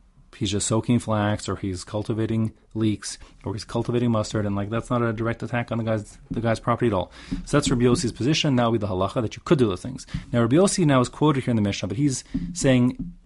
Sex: male